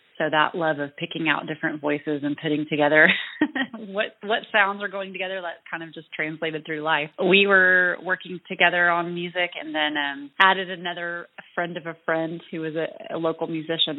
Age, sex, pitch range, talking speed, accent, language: 30-49, female, 150-180 Hz, 195 wpm, American, English